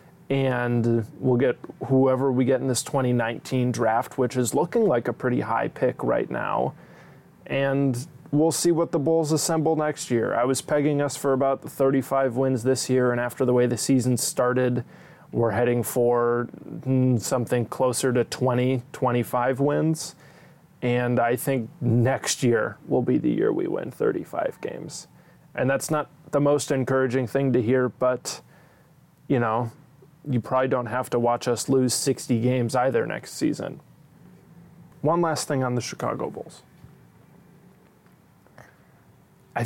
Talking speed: 155 wpm